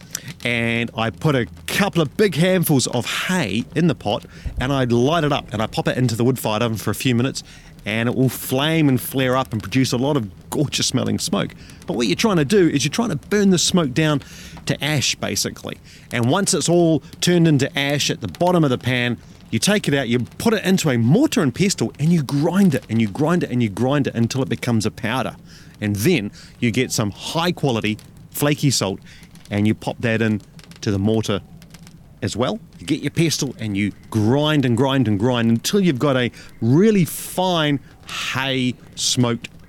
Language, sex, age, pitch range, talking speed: English, male, 30-49, 120-165 Hz, 215 wpm